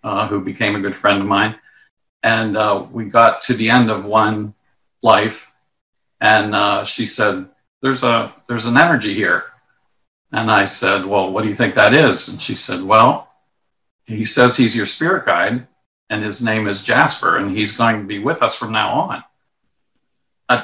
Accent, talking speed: American, 185 wpm